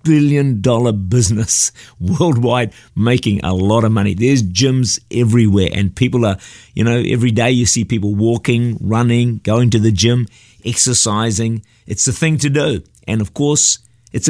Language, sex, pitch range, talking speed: English, male, 105-130 Hz, 160 wpm